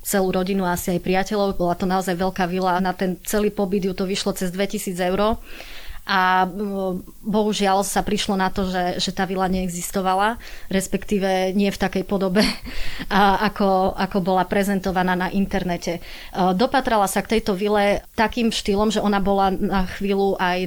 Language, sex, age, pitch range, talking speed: Slovak, female, 30-49, 185-205 Hz, 165 wpm